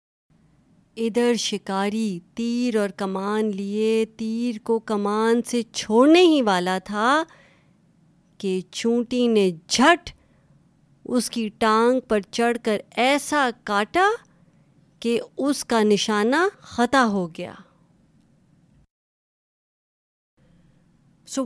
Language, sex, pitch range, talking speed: Urdu, female, 195-255 Hz, 95 wpm